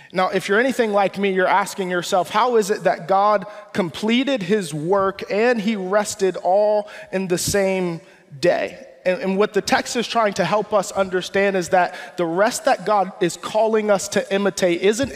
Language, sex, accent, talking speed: English, male, American, 190 wpm